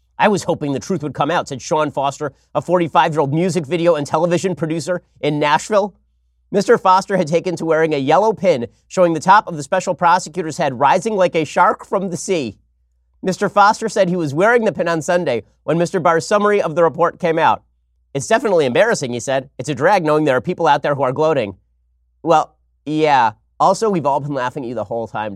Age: 30-49